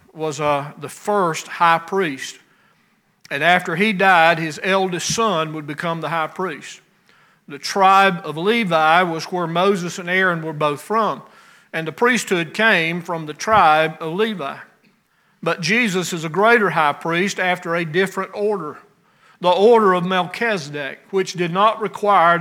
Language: English